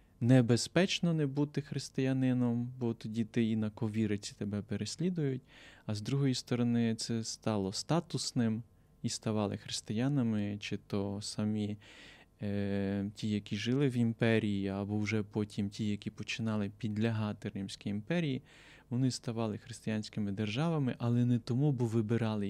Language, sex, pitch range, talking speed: Ukrainian, male, 100-120 Hz, 125 wpm